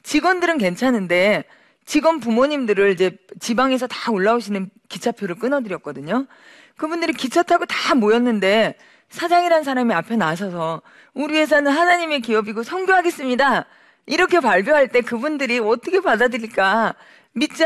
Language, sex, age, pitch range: Korean, female, 40-59, 180-265 Hz